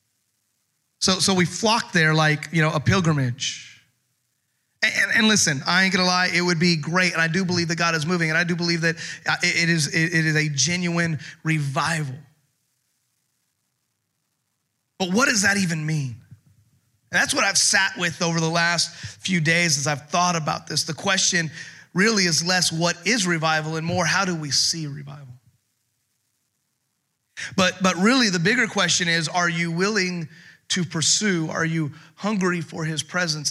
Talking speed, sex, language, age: 175 wpm, male, English, 30-49